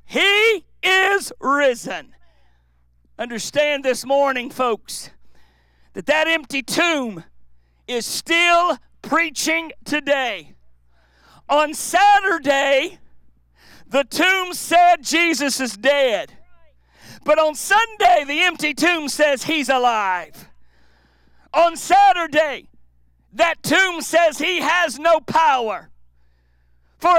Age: 50-69